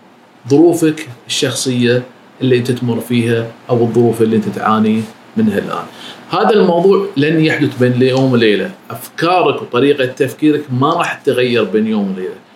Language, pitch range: Arabic, 120-145 Hz